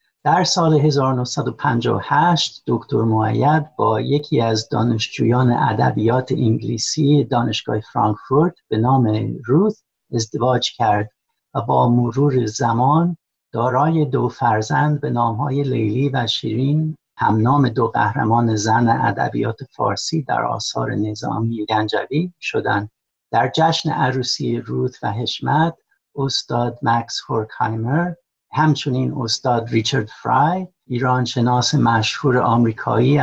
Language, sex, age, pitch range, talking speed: Persian, male, 60-79, 115-145 Hz, 105 wpm